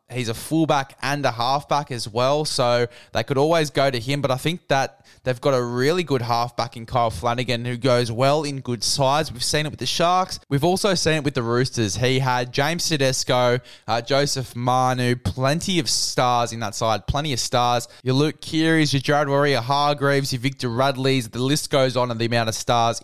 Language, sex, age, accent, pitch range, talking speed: English, male, 10-29, Australian, 120-145 Hz, 210 wpm